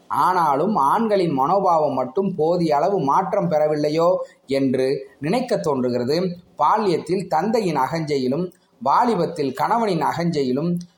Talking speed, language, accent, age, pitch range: 95 wpm, Tamil, native, 30-49, 150-195 Hz